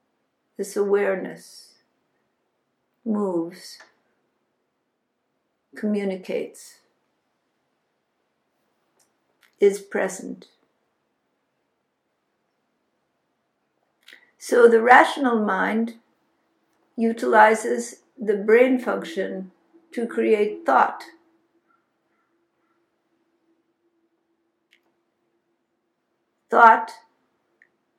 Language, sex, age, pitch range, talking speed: English, female, 60-79, 210-330 Hz, 40 wpm